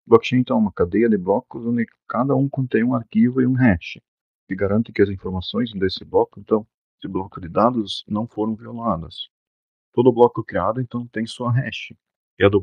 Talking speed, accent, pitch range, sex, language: 200 wpm, Brazilian, 100-120 Hz, male, Portuguese